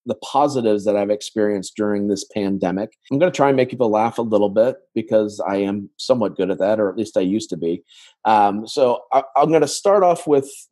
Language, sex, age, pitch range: English, male, 30-49, 100-125 Hz